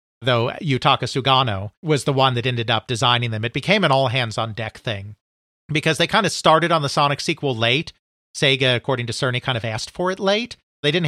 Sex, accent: male, American